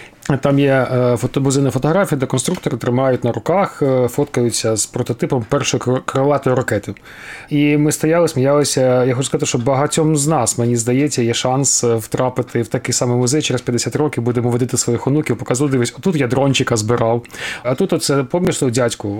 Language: Ukrainian